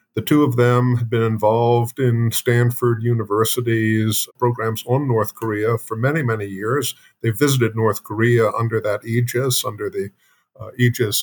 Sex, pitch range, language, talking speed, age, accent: male, 110-125 Hz, English, 155 wpm, 50-69, American